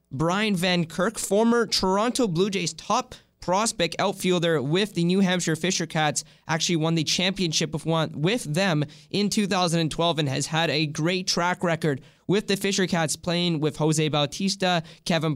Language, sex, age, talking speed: English, male, 20-39, 165 wpm